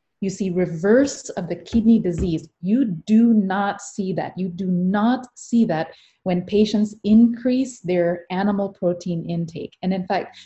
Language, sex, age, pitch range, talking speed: English, female, 20-39, 175-205 Hz, 155 wpm